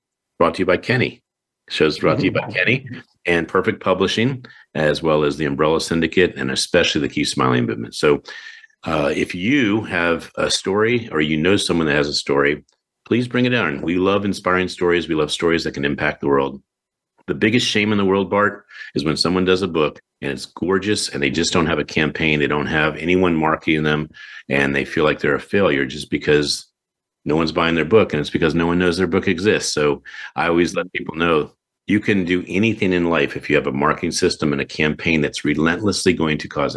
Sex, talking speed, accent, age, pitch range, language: male, 220 wpm, American, 50-69, 75-100 Hz, English